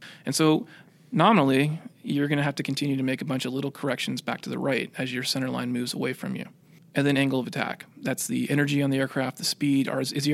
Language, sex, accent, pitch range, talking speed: English, male, American, 130-160 Hz, 275 wpm